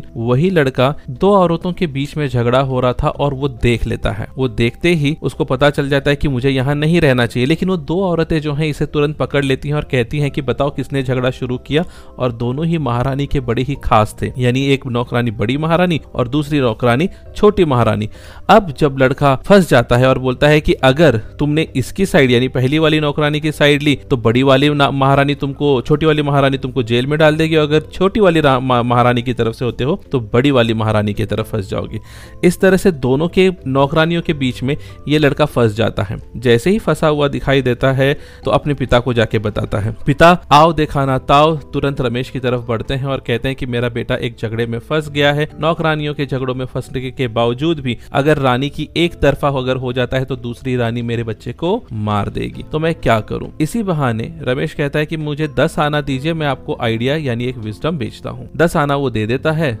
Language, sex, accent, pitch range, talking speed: Hindi, male, native, 120-150 Hz, 200 wpm